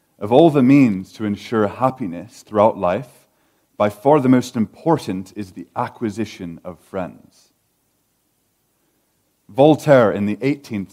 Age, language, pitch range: 30-49, English, 100-125 Hz